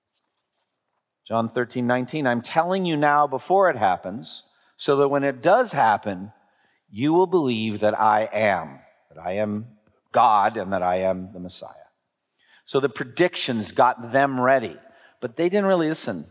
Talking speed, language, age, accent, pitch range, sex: 160 wpm, English, 50-69, American, 110-160 Hz, male